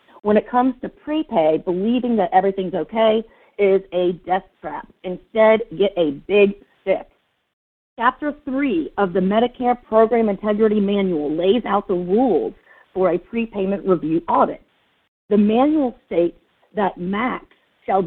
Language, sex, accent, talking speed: English, female, American, 135 wpm